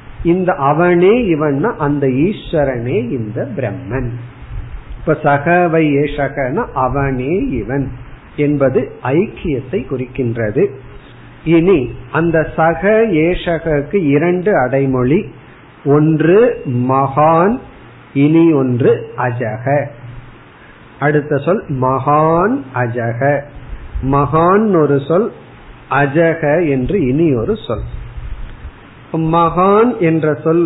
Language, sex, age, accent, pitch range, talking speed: Tamil, male, 50-69, native, 130-165 Hz, 75 wpm